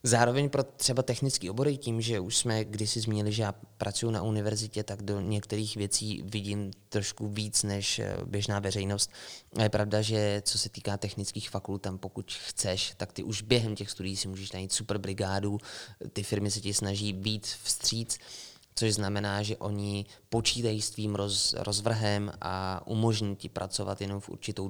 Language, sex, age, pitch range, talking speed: Czech, male, 20-39, 100-110 Hz, 170 wpm